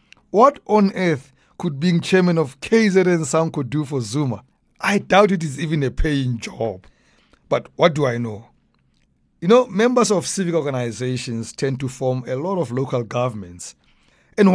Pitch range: 130-180 Hz